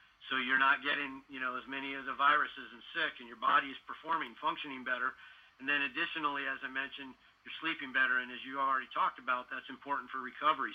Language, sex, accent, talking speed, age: English, male, American, 220 wpm, 50-69